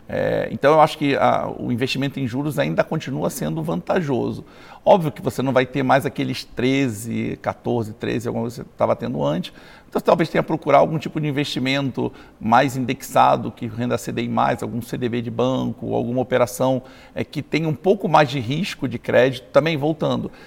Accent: Brazilian